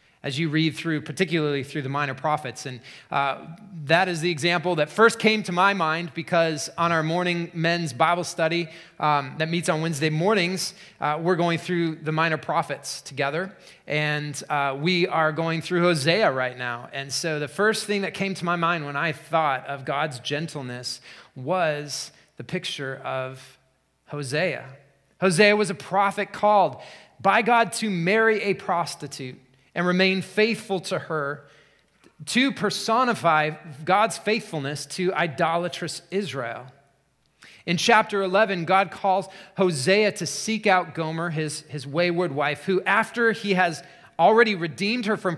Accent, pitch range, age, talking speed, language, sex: American, 145-190 Hz, 30-49, 155 wpm, English, male